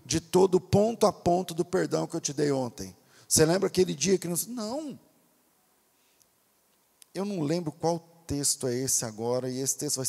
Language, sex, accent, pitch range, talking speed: Portuguese, male, Brazilian, 140-200 Hz, 185 wpm